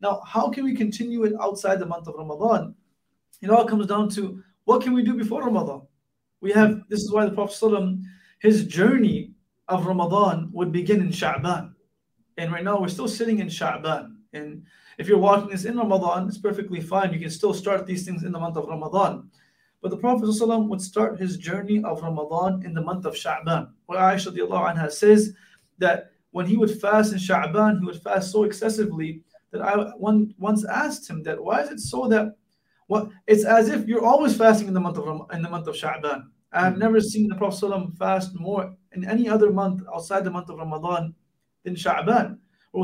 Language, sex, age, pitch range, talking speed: English, male, 20-39, 175-215 Hz, 205 wpm